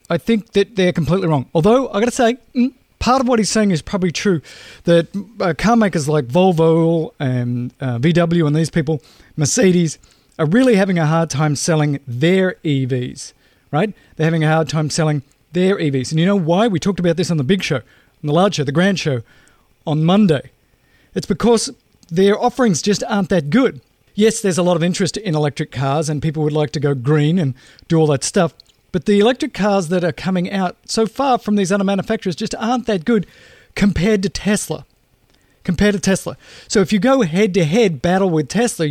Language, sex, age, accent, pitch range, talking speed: English, male, 40-59, Australian, 150-200 Hz, 205 wpm